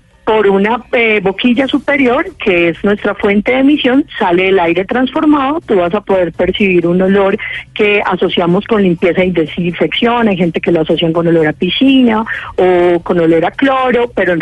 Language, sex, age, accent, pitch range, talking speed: Spanish, female, 30-49, Colombian, 180-230 Hz, 180 wpm